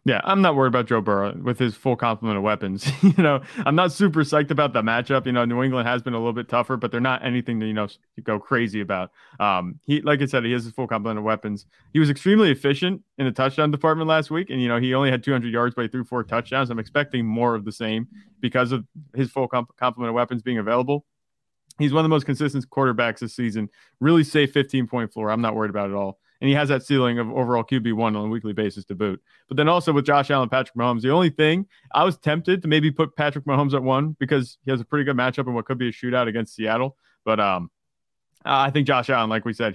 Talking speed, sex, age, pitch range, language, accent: 260 wpm, male, 30-49, 110-140 Hz, English, American